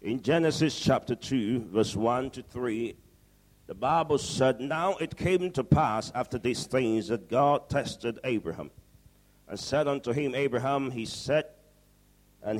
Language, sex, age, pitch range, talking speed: English, male, 50-69, 115-140 Hz, 150 wpm